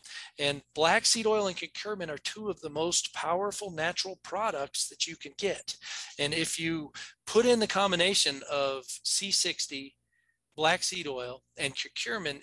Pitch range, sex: 150-195 Hz, male